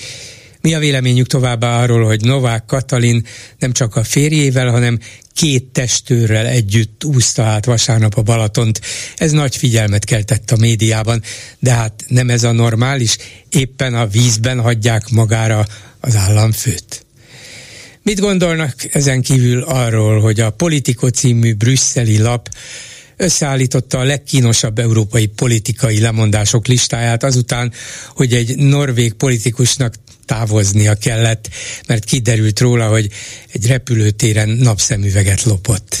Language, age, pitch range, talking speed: Hungarian, 60-79, 110-130 Hz, 120 wpm